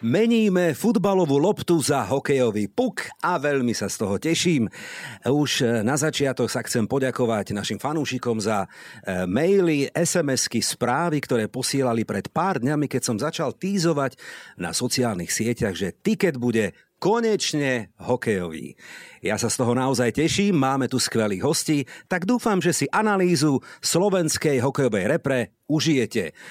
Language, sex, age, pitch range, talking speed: Slovak, male, 50-69, 120-170 Hz, 135 wpm